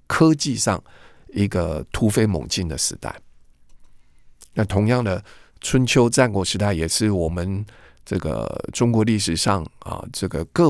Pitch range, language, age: 90-115 Hz, Chinese, 50-69